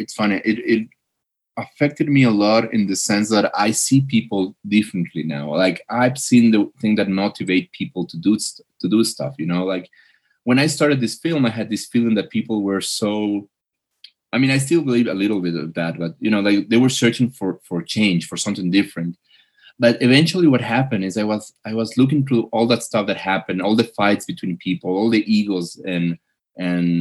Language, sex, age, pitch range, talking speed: English, male, 30-49, 95-125 Hz, 215 wpm